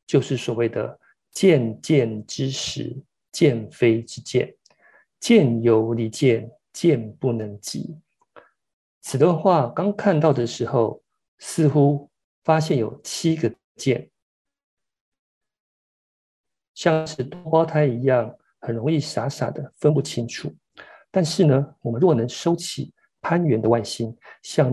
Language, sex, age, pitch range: Chinese, male, 50-69, 120-160 Hz